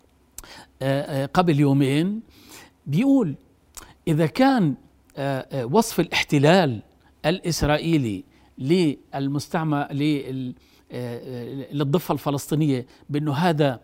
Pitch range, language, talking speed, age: 140-175 Hz, Arabic, 55 wpm, 50-69